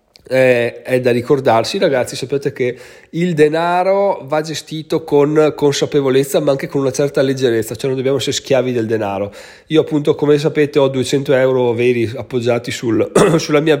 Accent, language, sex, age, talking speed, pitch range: native, Italian, male, 30-49, 165 wpm, 120-155 Hz